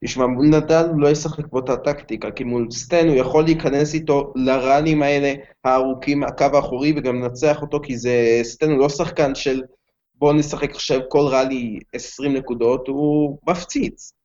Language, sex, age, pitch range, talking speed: Hebrew, male, 20-39, 130-150 Hz, 170 wpm